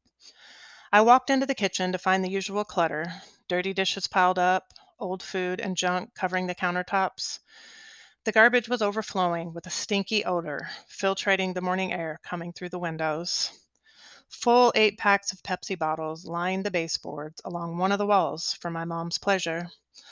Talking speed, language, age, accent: 165 wpm, English, 30-49, American